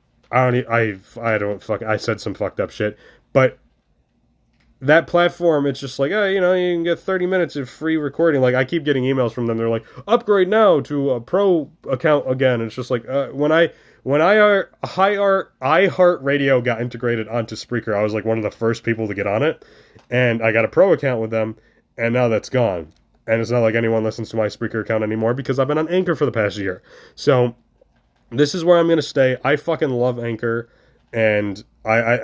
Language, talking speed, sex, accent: English, 220 wpm, male, American